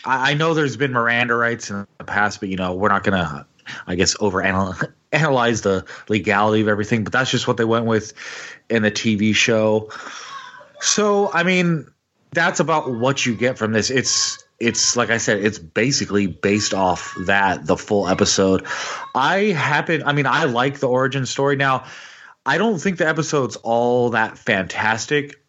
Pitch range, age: 105-130 Hz, 30-49